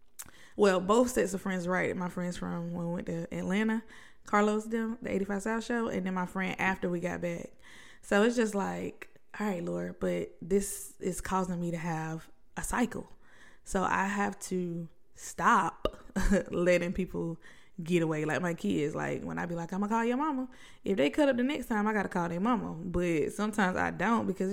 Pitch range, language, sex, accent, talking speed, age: 175-215 Hz, English, female, American, 210 wpm, 20-39